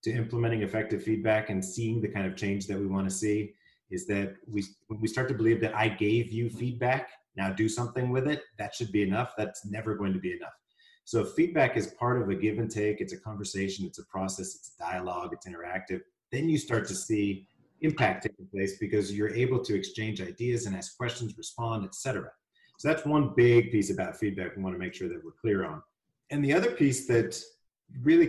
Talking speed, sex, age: 220 wpm, male, 30-49